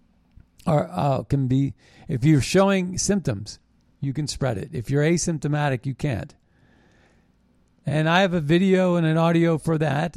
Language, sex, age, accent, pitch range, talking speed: English, male, 50-69, American, 130-175 Hz, 160 wpm